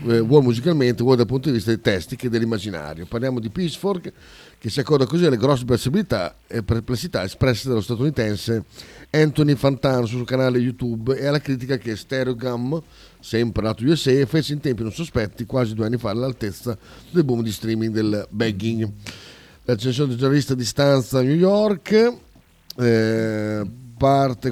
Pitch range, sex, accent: 110-145 Hz, male, native